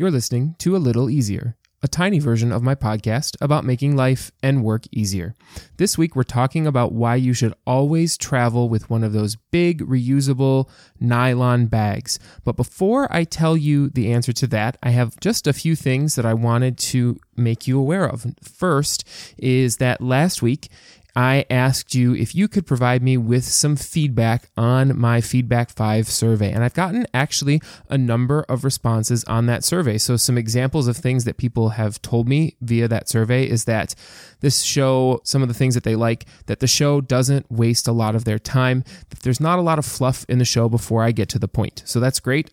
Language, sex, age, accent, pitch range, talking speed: English, male, 20-39, American, 115-135 Hz, 205 wpm